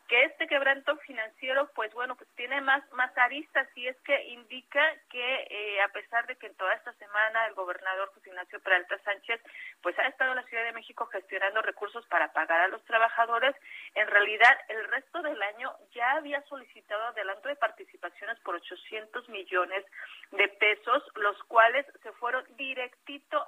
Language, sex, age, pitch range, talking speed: Spanish, female, 40-59, 215-270 Hz, 175 wpm